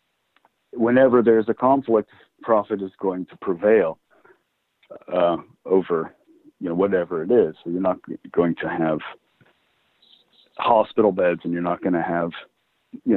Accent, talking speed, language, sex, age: American, 145 wpm, English, male, 50-69